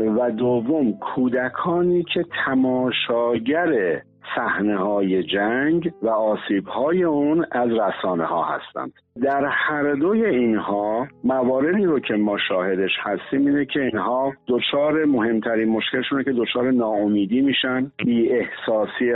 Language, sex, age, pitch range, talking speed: Persian, male, 50-69, 110-140 Hz, 120 wpm